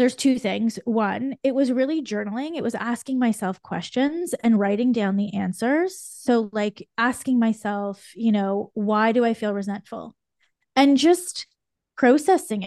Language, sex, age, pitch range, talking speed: English, female, 20-39, 195-235 Hz, 150 wpm